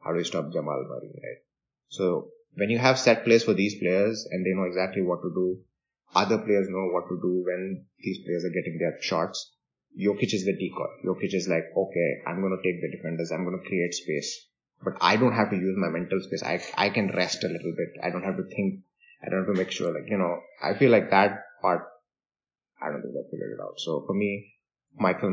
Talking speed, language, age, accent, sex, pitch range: 240 wpm, English, 20-39, Indian, male, 90-125 Hz